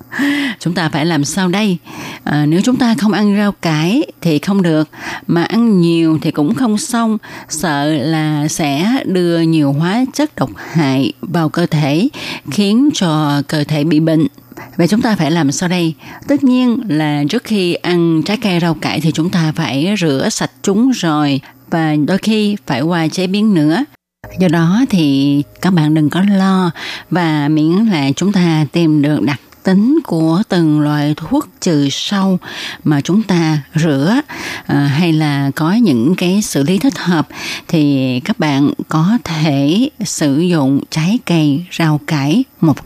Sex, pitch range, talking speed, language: female, 155-200 Hz, 170 wpm, Vietnamese